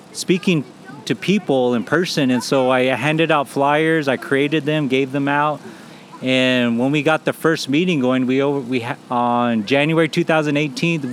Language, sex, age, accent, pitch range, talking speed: English, male, 30-49, American, 130-155 Hz, 175 wpm